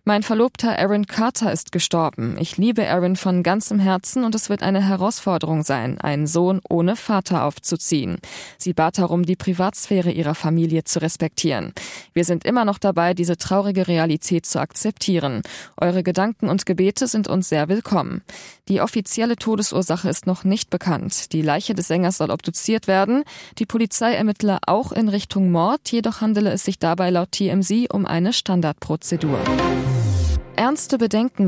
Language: German